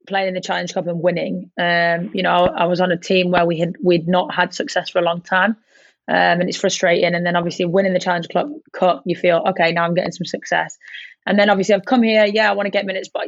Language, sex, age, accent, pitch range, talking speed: English, female, 20-39, British, 175-195 Hz, 265 wpm